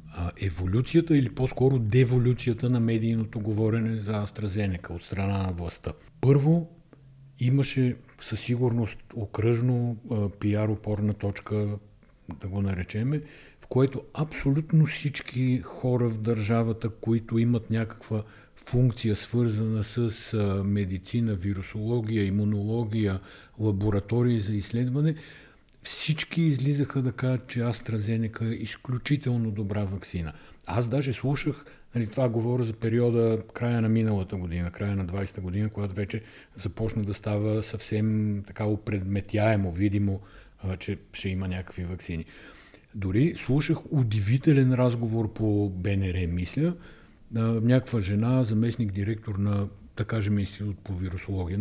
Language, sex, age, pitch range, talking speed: Bulgarian, male, 50-69, 100-125 Hz, 115 wpm